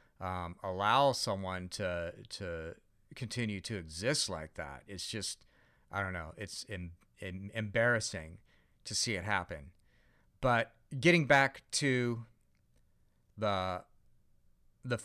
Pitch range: 90-115 Hz